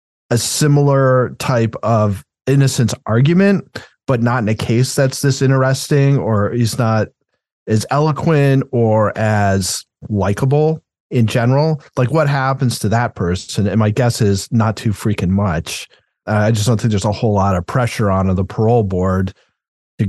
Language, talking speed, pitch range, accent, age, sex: English, 160 wpm, 105-130 Hz, American, 30-49, male